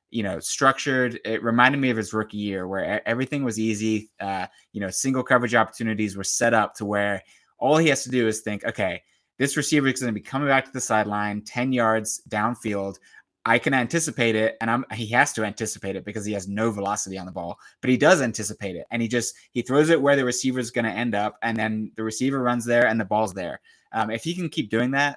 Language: English